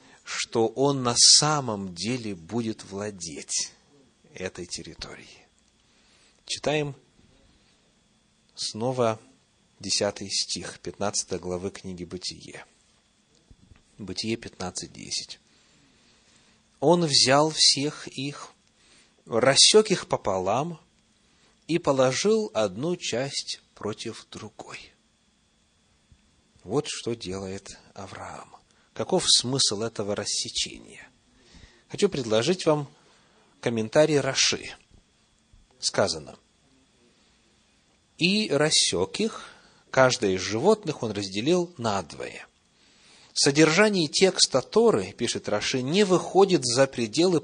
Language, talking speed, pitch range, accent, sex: Russian, 80 wpm, 110-165 Hz, native, male